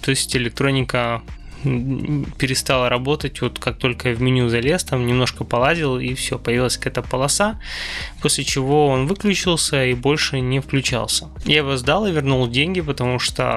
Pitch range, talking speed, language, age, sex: 125-145 Hz, 155 wpm, Russian, 20-39, male